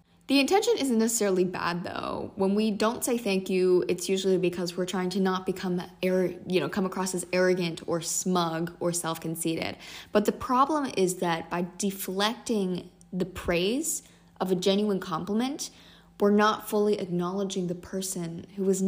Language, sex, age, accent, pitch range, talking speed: English, female, 20-39, American, 175-220 Hz, 165 wpm